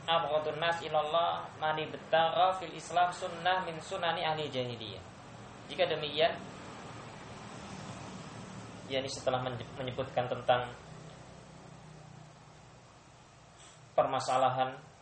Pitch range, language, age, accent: 120-155 Hz, Indonesian, 20-39, native